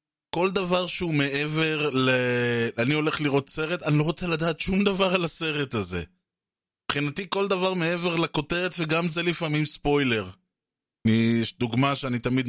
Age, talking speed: 20-39, 155 wpm